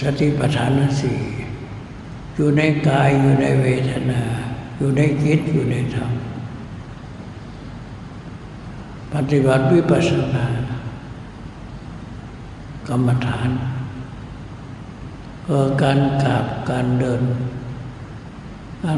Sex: male